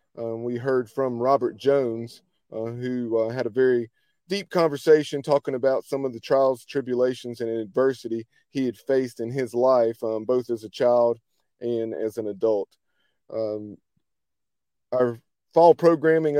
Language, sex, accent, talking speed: English, male, American, 155 wpm